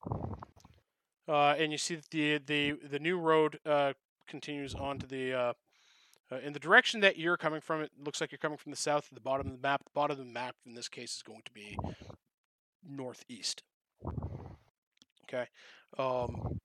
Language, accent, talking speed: English, American, 190 wpm